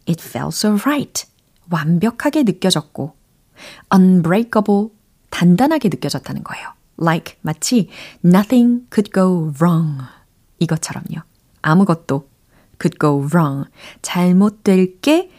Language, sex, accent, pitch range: Korean, female, native, 165-265 Hz